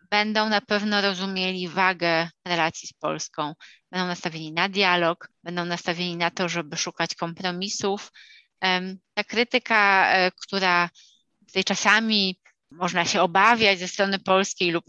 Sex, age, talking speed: female, 20-39, 125 wpm